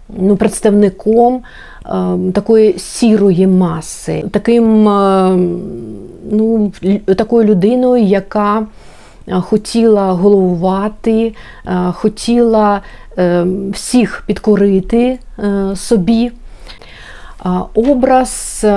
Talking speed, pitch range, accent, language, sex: 50 wpm, 185-230 Hz, native, Ukrainian, female